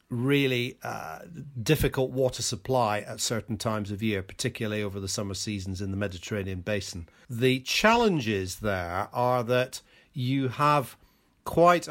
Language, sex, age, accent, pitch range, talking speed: English, male, 40-59, British, 105-130 Hz, 135 wpm